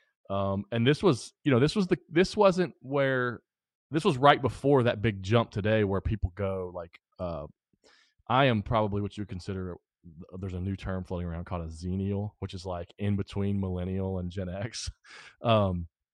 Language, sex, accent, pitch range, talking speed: English, male, American, 95-110 Hz, 190 wpm